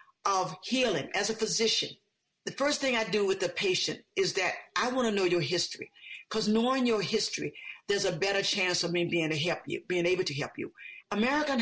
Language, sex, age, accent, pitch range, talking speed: English, female, 50-69, American, 170-205 Hz, 210 wpm